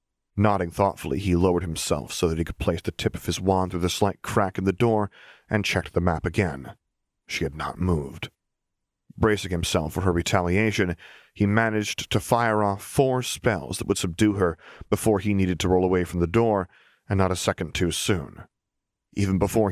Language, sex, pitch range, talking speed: English, male, 90-105 Hz, 195 wpm